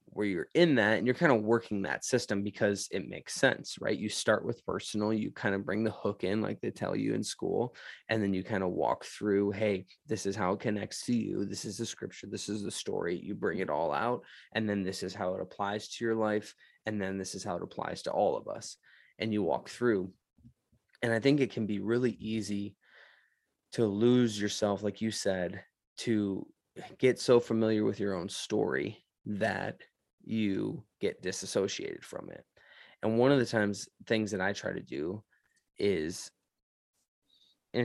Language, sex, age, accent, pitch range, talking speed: English, male, 20-39, American, 100-115 Hz, 200 wpm